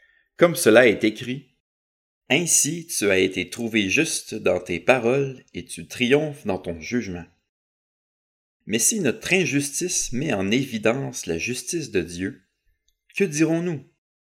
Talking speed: 135 wpm